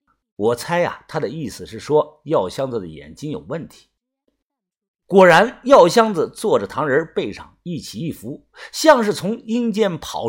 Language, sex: Chinese, male